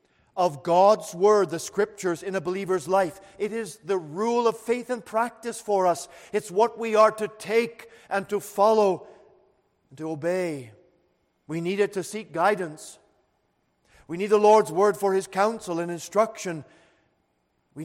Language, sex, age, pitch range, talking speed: English, male, 50-69, 150-195 Hz, 160 wpm